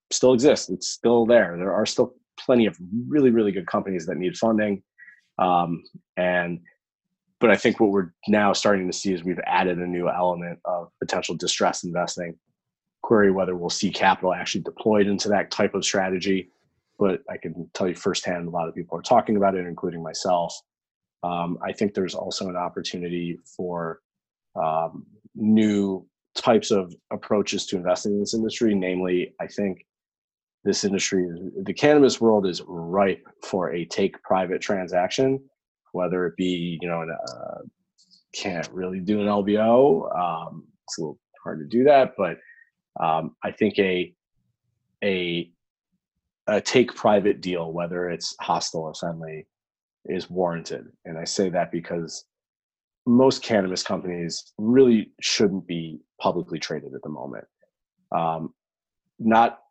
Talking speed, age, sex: 155 wpm, 30-49, male